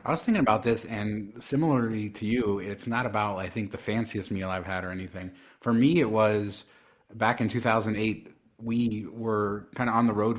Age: 30-49